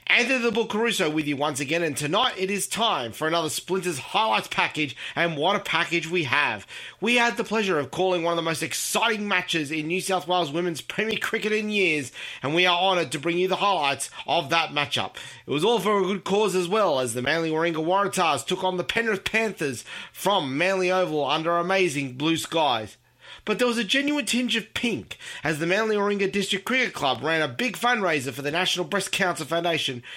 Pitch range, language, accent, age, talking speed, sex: 160-205 Hz, English, Australian, 30-49, 215 wpm, male